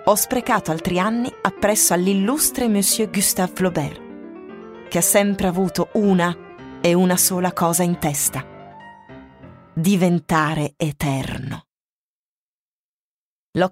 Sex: female